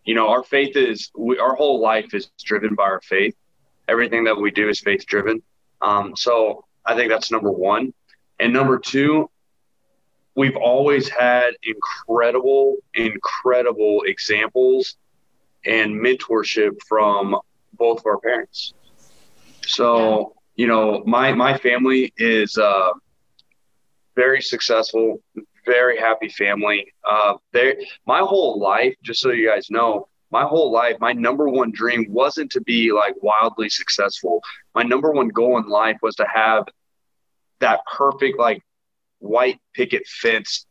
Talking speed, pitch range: 140 wpm, 110-140 Hz